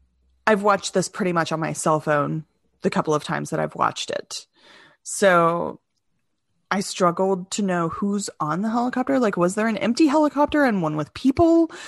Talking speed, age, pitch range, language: 180 wpm, 30-49, 155-220 Hz, English